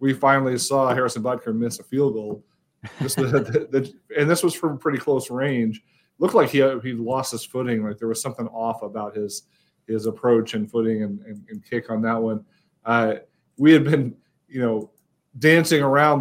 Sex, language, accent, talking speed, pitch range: male, English, American, 200 wpm, 115-135 Hz